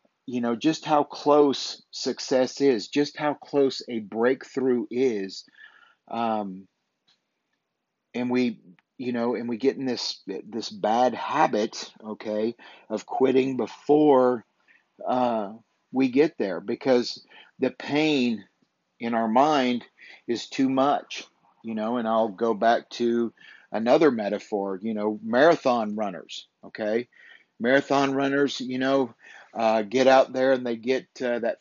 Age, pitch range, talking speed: 40-59, 115-130 Hz, 135 wpm